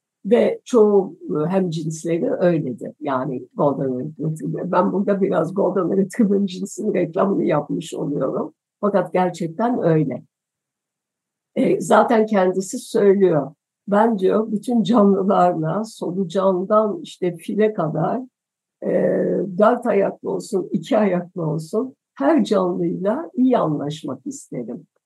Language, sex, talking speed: Turkish, female, 105 wpm